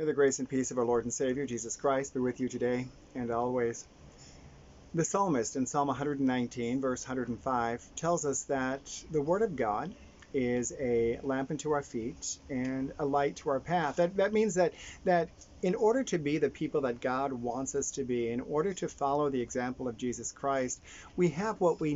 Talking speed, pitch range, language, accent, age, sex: 200 wpm, 125-175 Hz, English, American, 40-59, male